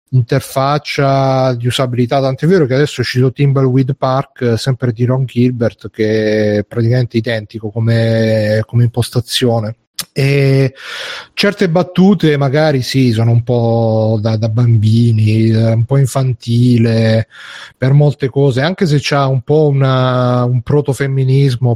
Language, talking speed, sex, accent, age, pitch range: Italian, 130 wpm, male, native, 40-59, 115-140 Hz